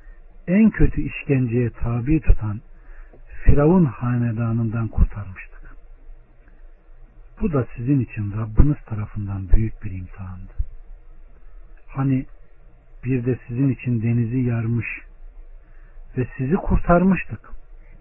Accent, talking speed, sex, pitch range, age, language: native, 90 wpm, male, 100-135 Hz, 60-79, Turkish